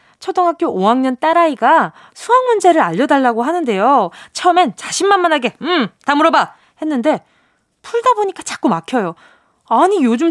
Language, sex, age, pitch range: Korean, female, 20-39, 215-335 Hz